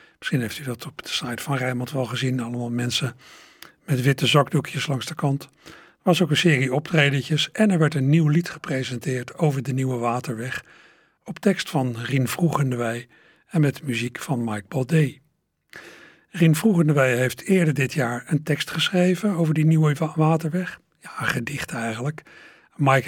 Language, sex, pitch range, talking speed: Dutch, male, 130-160 Hz, 170 wpm